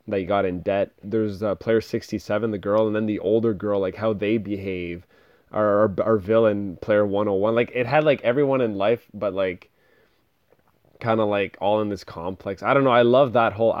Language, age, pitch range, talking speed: English, 20-39, 105-120 Hz, 215 wpm